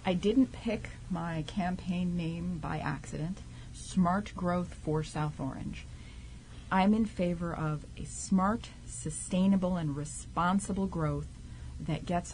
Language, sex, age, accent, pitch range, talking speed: English, female, 30-49, American, 155-190 Hz, 120 wpm